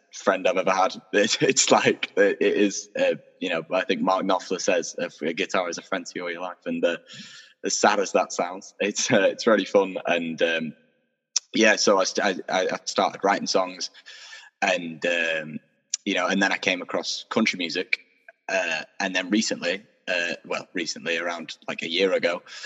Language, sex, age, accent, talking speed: English, male, 10-29, British, 190 wpm